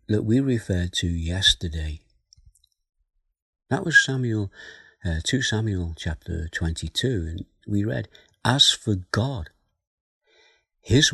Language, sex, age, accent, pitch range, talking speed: English, male, 50-69, British, 85-105 Hz, 110 wpm